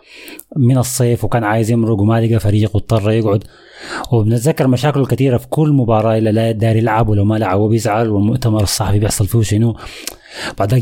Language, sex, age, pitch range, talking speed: Arabic, male, 20-39, 105-125 Hz, 160 wpm